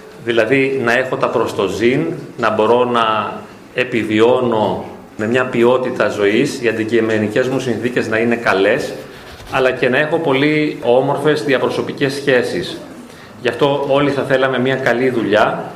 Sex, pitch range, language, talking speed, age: male, 120-145 Hz, Greek, 135 wpm, 30-49